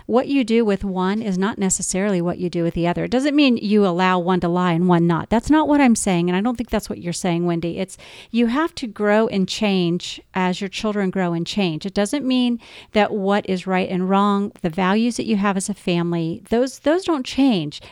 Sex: female